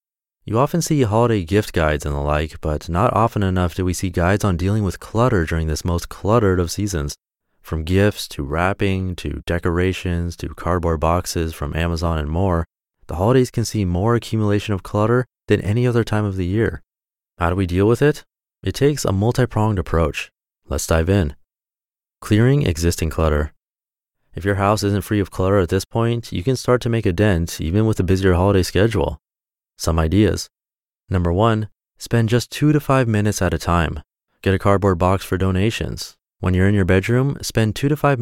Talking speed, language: 195 wpm, English